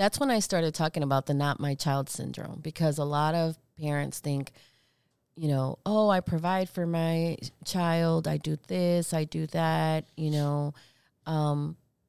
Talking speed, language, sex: 170 wpm, English, female